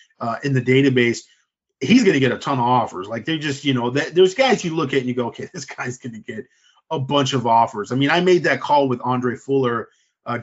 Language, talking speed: English, 245 wpm